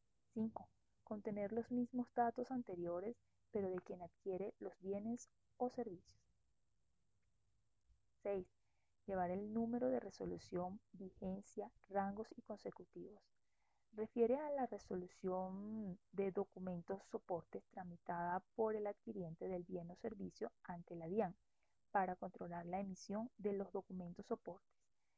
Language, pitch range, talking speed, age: Spanish, 175-215 Hz, 120 wpm, 20-39